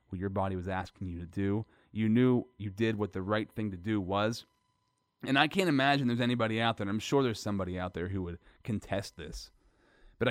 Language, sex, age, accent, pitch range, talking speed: English, male, 30-49, American, 95-115 Hz, 225 wpm